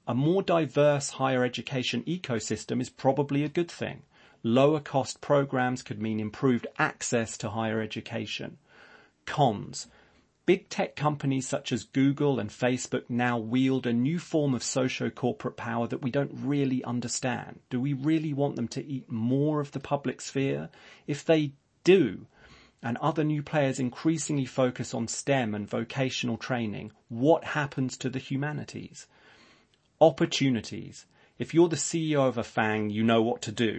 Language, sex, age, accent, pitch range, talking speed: English, male, 30-49, British, 115-145 Hz, 155 wpm